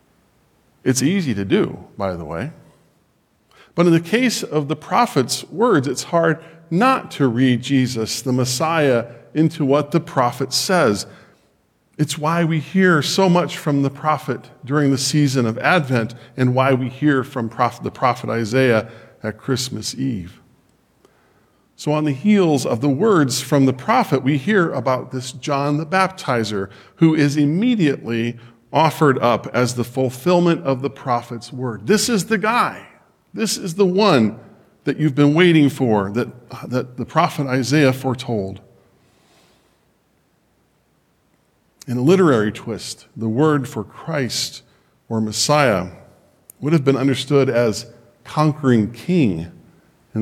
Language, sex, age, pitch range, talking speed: English, male, 40-59, 120-155 Hz, 140 wpm